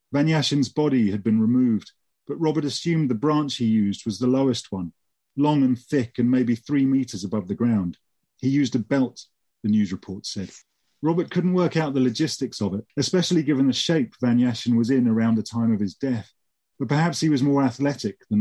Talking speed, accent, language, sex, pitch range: 200 wpm, British, English, male, 115-140 Hz